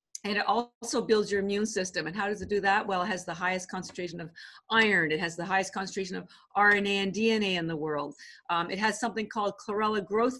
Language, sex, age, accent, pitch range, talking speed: English, female, 40-59, American, 175-225 Hz, 230 wpm